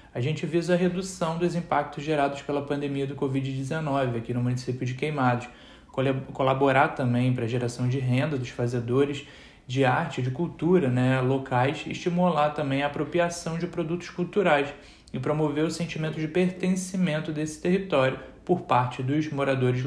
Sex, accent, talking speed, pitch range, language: male, Brazilian, 155 wpm, 125-155 Hz, Portuguese